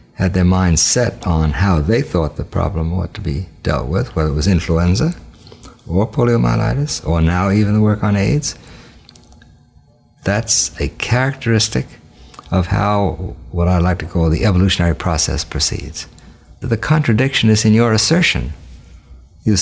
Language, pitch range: English, 80-110 Hz